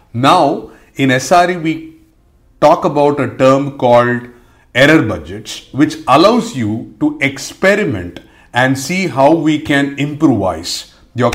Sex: male